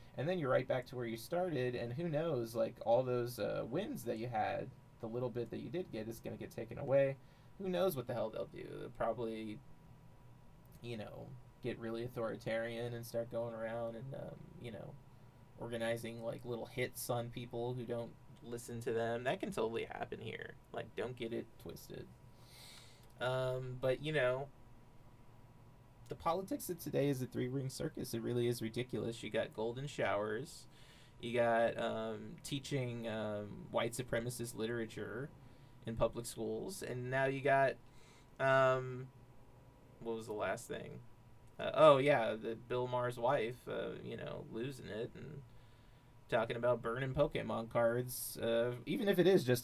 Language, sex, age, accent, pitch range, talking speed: English, male, 30-49, American, 115-135 Hz, 170 wpm